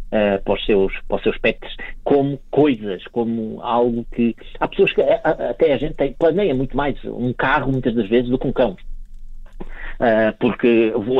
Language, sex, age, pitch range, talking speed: Portuguese, male, 50-69, 110-140 Hz, 180 wpm